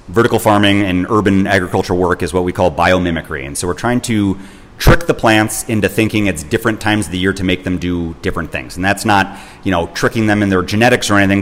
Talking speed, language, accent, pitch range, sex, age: 235 wpm, English, American, 90-110 Hz, male, 30-49